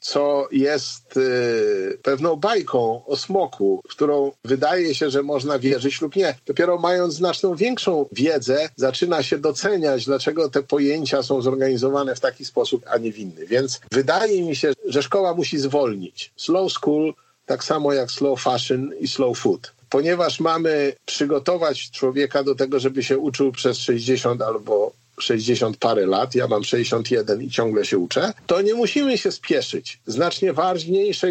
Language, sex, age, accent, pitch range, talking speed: Polish, male, 50-69, native, 135-175 Hz, 160 wpm